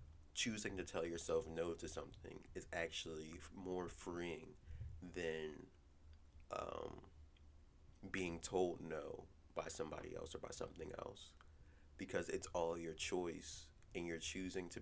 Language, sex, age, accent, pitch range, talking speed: English, male, 30-49, American, 75-95 Hz, 130 wpm